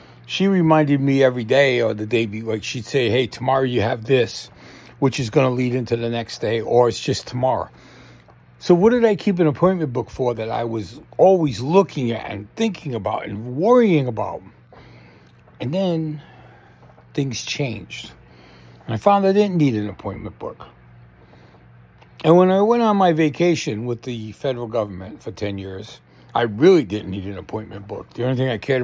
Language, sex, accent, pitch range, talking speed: English, male, American, 110-160 Hz, 185 wpm